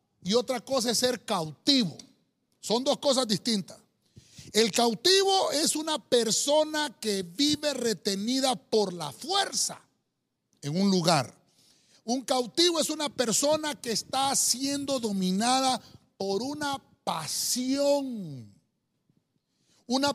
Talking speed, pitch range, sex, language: 110 wpm, 200-285 Hz, male, Spanish